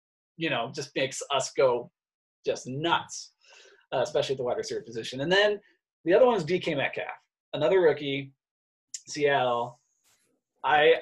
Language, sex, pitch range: English, male, 135-190 Hz